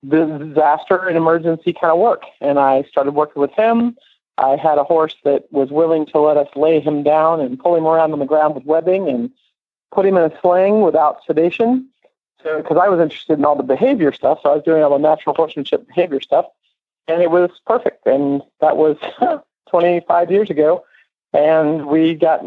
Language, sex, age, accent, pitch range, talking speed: English, male, 50-69, American, 150-175 Hz, 200 wpm